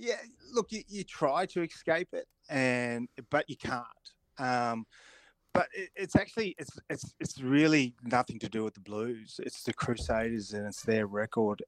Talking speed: 175 wpm